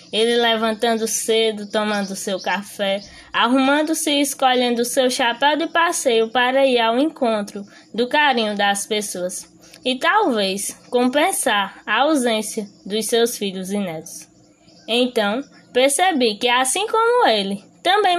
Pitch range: 205-270 Hz